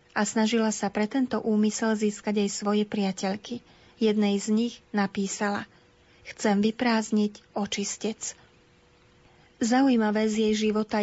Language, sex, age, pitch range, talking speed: Slovak, female, 30-49, 210-225 Hz, 115 wpm